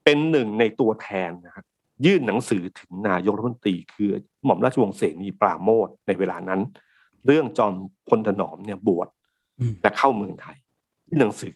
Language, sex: Thai, male